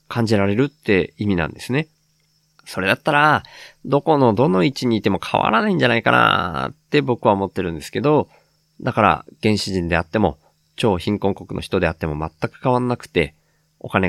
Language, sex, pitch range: Japanese, male, 95-140 Hz